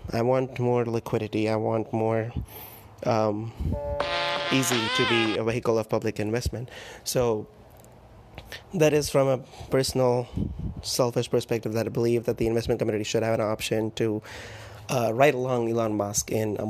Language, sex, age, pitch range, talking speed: English, male, 30-49, 110-125 Hz, 155 wpm